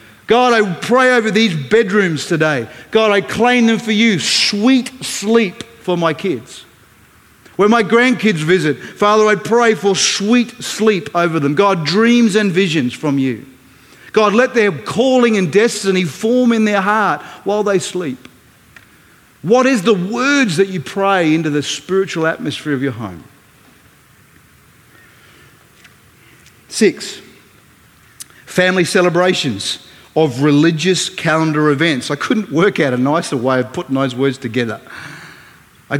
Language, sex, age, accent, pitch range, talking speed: English, male, 40-59, Australian, 145-210 Hz, 140 wpm